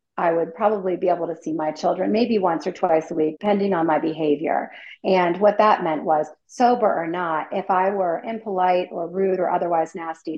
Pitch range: 165-195 Hz